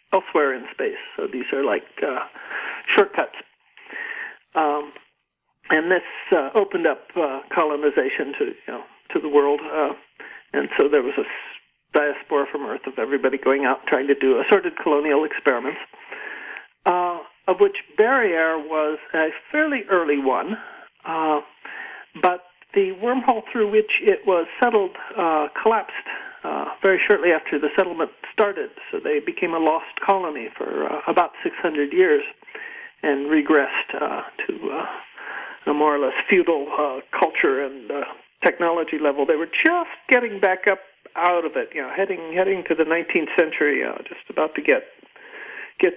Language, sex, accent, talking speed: English, male, American, 155 wpm